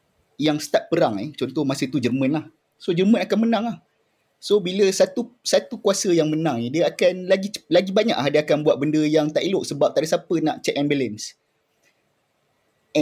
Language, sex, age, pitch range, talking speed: Malay, male, 20-39, 145-195 Hz, 195 wpm